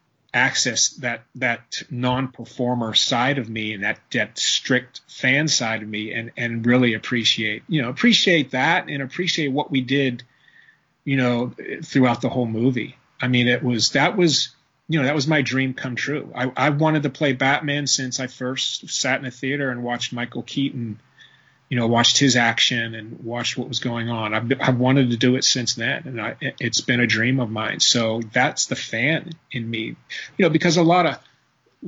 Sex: male